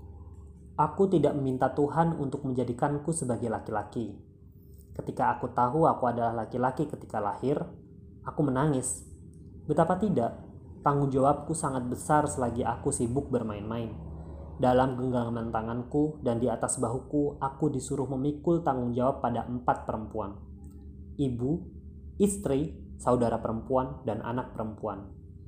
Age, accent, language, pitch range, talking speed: 20-39, native, Indonesian, 105-145 Hz, 120 wpm